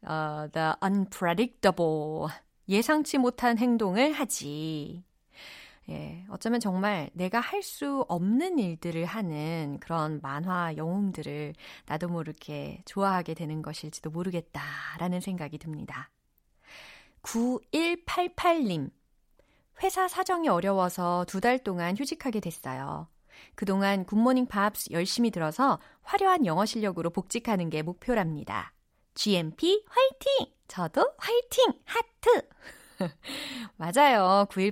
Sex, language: female, Korean